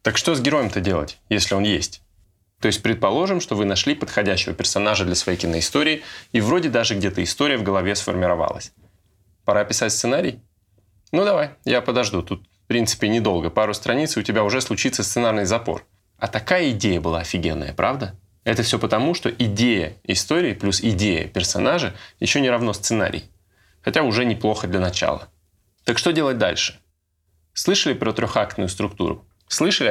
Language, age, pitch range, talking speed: Russian, 20-39, 95-120 Hz, 160 wpm